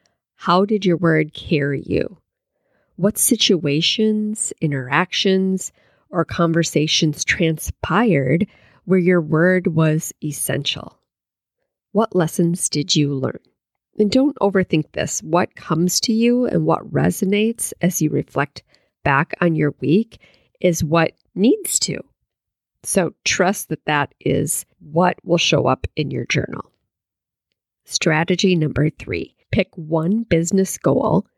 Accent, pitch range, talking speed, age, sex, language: American, 150-190 Hz, 120 wpm, 40-59, female, English